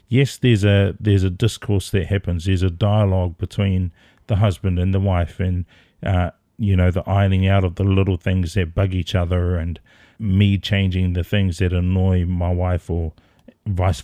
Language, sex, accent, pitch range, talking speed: English, male, Australian, 95-105 Hz, 185 wpm